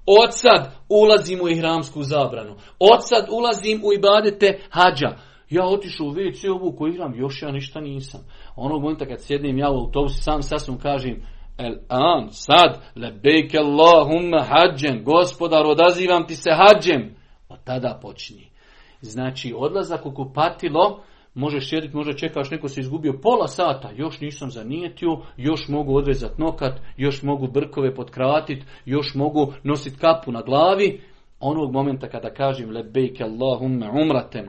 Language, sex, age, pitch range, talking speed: Croatian, male, 40-59, 130-160 Hz, 135 wpm